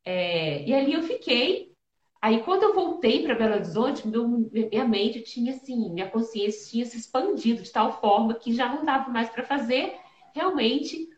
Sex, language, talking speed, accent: female, Portuguese, 175 wpm, Brazilian